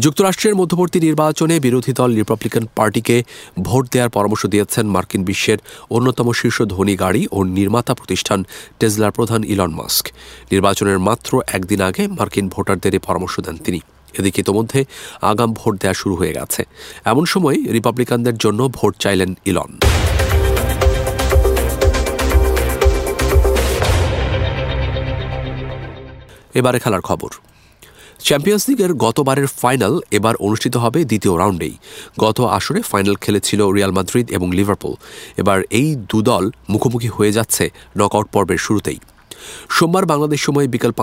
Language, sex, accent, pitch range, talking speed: English, male, Indian, 95-125 Hz, 100 wpm